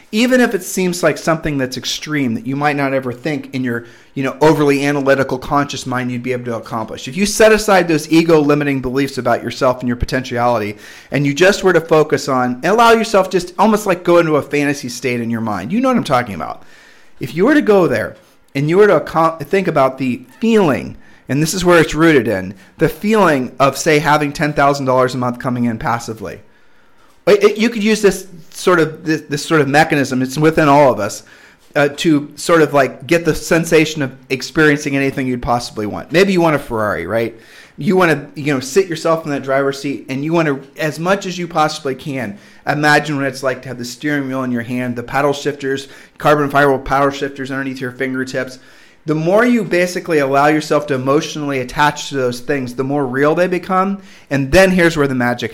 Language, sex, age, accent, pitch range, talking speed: English, male, 40-59, American, 130-170 Hz, 220 wpm